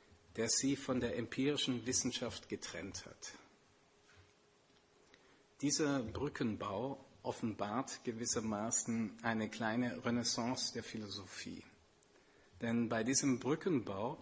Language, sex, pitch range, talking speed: German, male, 115-140 Hz, 90 wpm